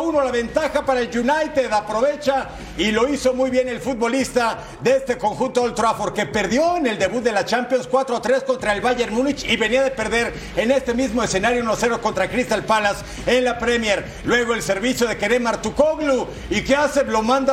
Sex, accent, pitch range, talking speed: male, Mexican, 230-280 Hz, 195 wpm